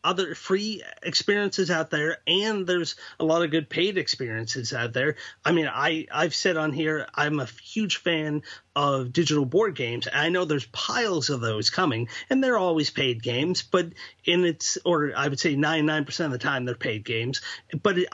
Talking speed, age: 190 wpm, 30-49